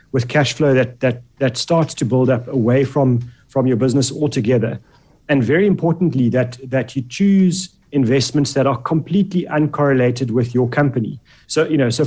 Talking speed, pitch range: 175 wpm, 125-145 Hz